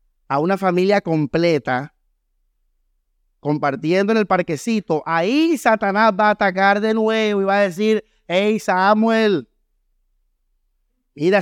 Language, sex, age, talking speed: Spanish, male, 30-49, 115 wpm